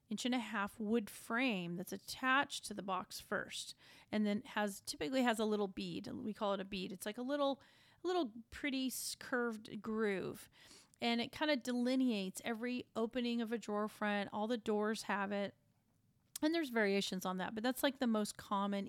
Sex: female